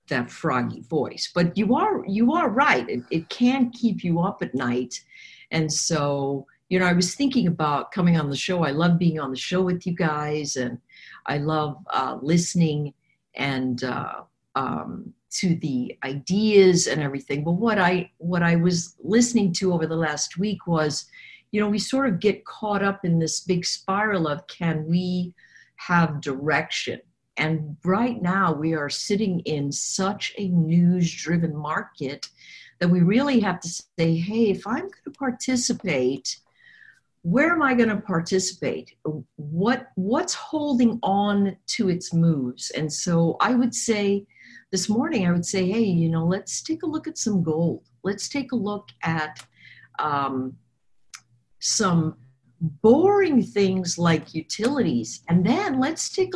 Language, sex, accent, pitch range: English, female, American, 155-215 Hz